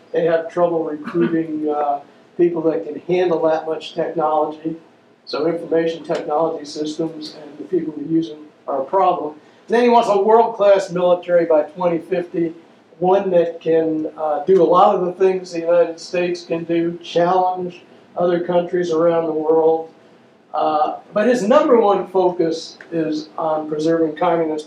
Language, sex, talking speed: English, male, 155 wpm